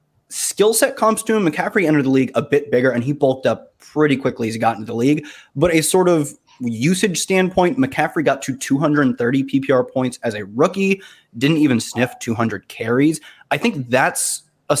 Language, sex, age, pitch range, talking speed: English, male, 20-39, 125-160 Hz, 195 wpm